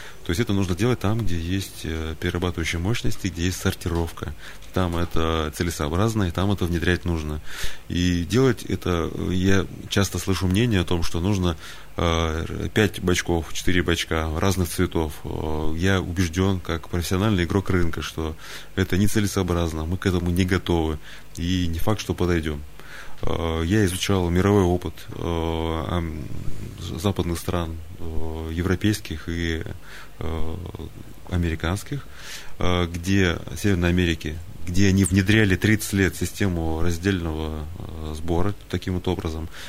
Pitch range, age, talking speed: 85-95 Hz, 30-49, 120 wpm